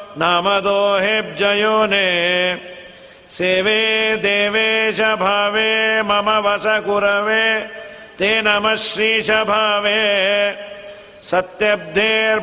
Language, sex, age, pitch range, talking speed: Kannada, male, 50-69, 185-215 Hz, 65 wpm